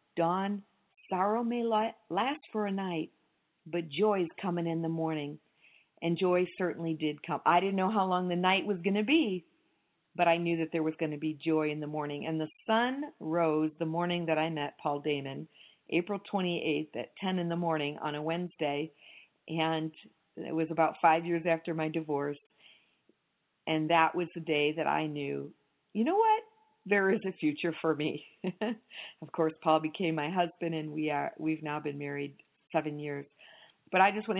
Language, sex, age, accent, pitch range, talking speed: English, female, 50-69, American, 155-185 Hz, 190 wpm